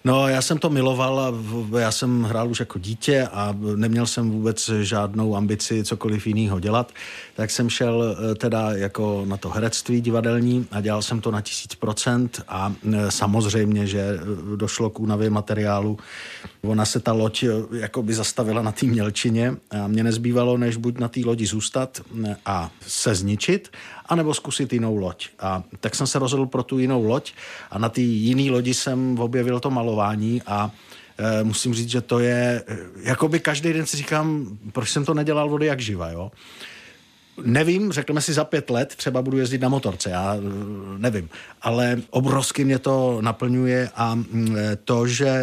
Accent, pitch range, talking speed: native, 105-125 Hz, 170 wpm